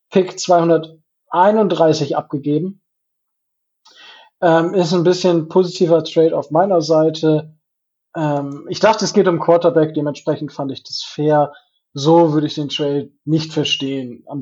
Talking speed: 135 wpm